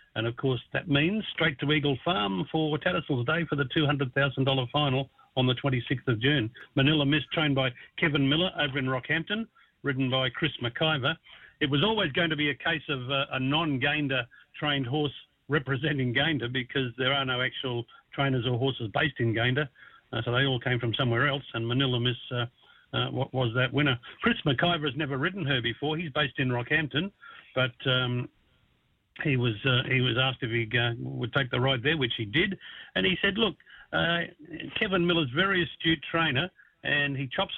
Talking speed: 190 wpm